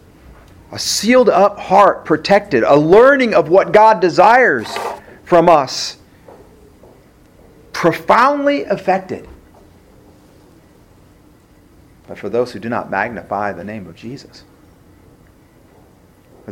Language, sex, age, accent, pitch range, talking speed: English, male, 40-59, American, 95-145 Hz, 100 wpm